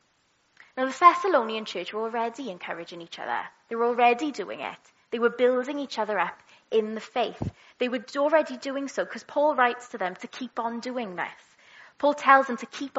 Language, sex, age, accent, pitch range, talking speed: English, female, 20-39, British, 230-285 Hz, 200 wpm